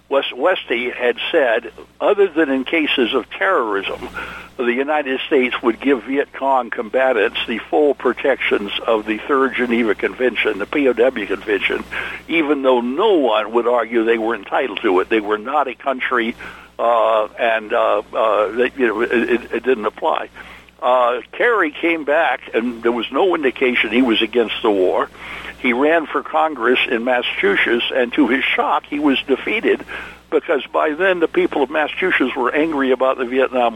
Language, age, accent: English, 60-79, American